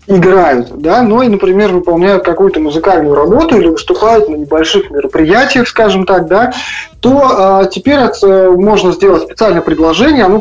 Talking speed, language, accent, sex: 145 wpm, Russian, native, male